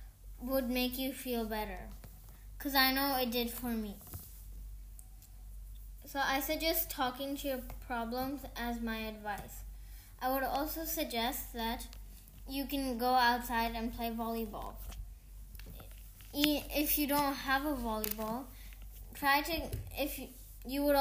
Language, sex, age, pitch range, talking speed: English, female, 10-29, 220-270 Hz, 130 wpm